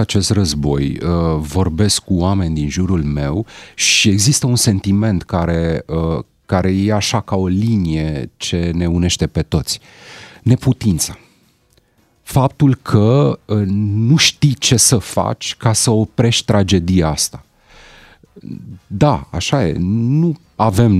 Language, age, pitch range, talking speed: Romanian, 40-59, 90-115 Hz, 120 wpm